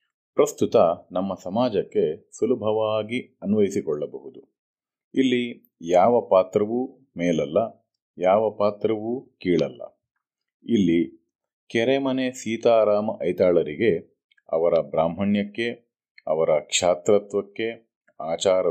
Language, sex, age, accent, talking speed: Kannada, male, 40-59, native, 65 wpm